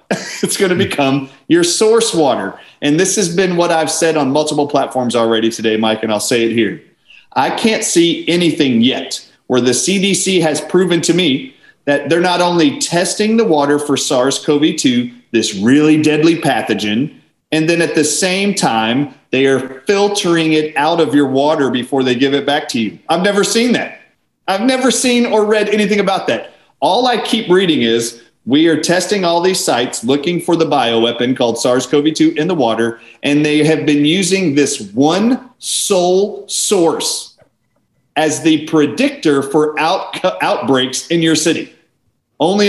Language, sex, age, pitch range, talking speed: English, male, 40-59, 140-200 Hz, 170 wpm